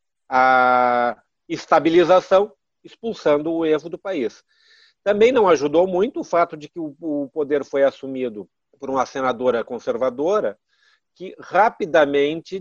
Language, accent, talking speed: Portuguese, Brazilian, 120 wpm